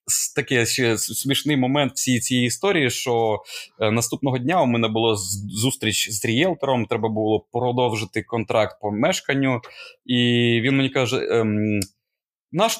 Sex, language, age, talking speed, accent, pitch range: male, Ukrainian, 20-39, 130 wpm, native, 115-155 Hz